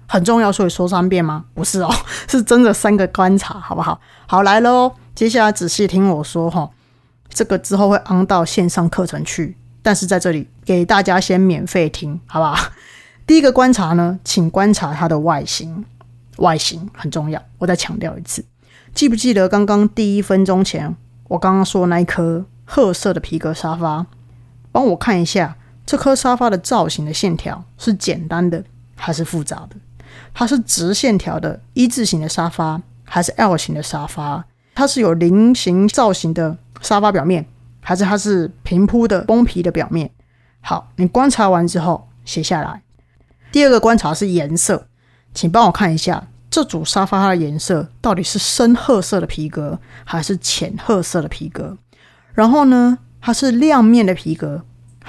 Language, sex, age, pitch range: Chinese, female, 20-39, 155-205 Hz